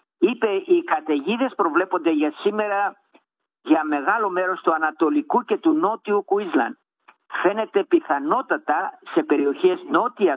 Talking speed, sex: 115 wpm, male